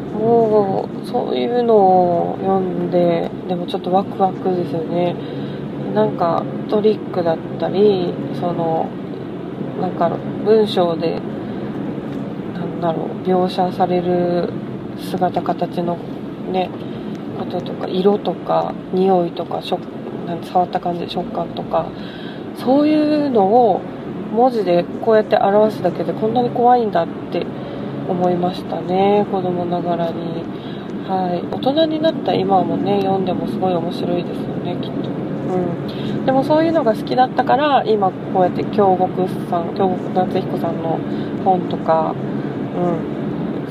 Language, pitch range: Japanese, 175-210 Hz